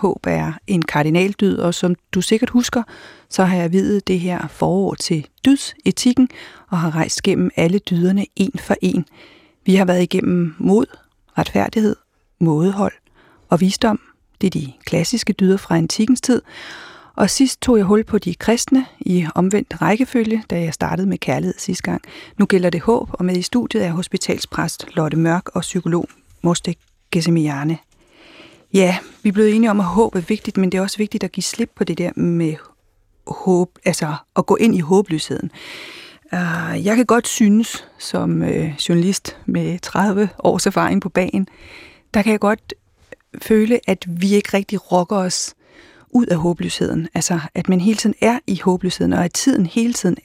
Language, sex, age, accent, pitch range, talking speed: Danish, female, 40-59, native, 175-220 Hz, 175 wpm